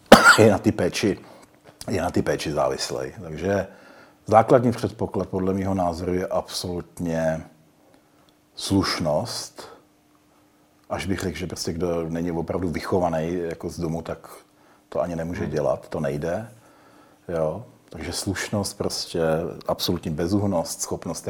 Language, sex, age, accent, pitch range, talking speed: Czech, male, 40-59, native, 80-95 Hz, 125 wpm